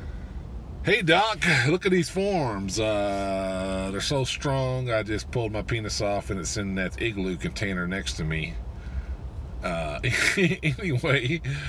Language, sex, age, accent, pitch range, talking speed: English, male, 40-59, American, 85-115 Hz, 140 wpm